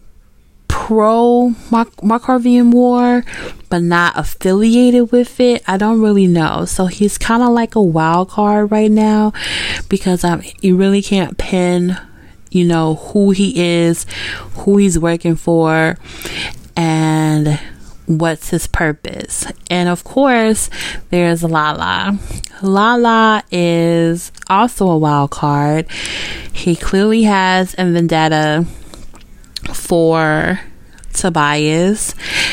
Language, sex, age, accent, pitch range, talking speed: English, female, 20-39, American, 165-200 Hz, 110 wpm